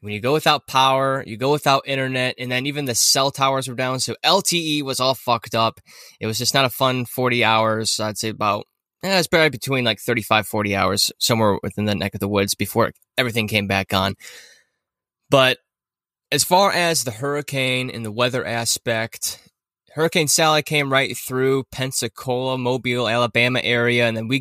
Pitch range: 110-135 Hz